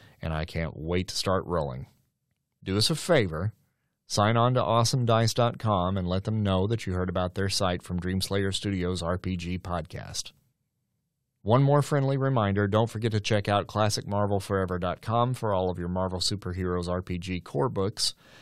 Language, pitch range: English, 90-110 Hz